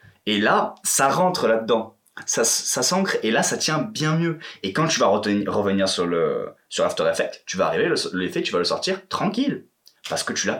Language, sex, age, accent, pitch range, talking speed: French, male, 20-39, French, 115-185 Hz, 220 wpm